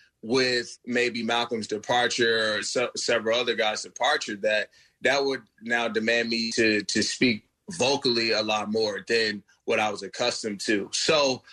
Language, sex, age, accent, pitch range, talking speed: English, male, 30-49, American, 110-125 Hz, 155 wpm